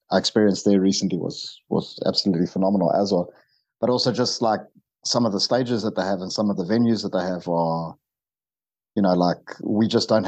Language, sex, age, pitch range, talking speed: English, male, 30-49, 95-105 Hz, 205 wpm